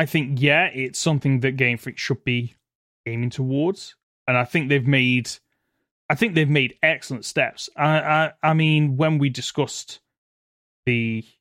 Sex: male